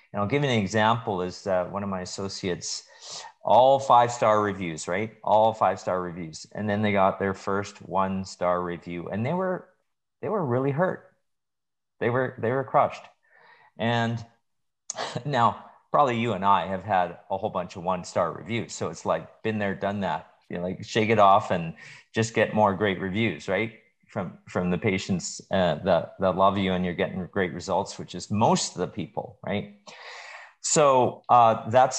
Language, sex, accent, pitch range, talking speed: English, male, American, 95-115 Hz, 180 wpm